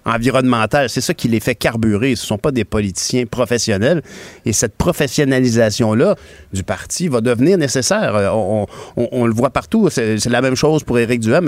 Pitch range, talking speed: 105-140 Hz, 195 wpm